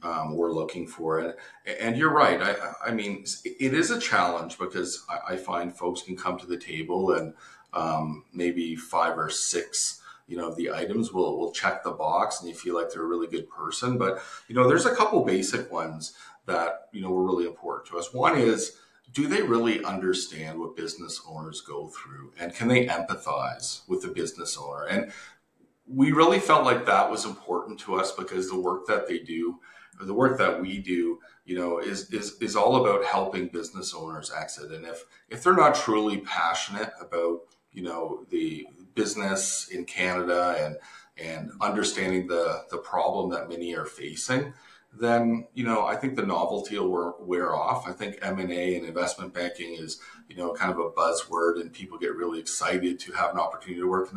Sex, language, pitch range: male, English, 85-115 Hz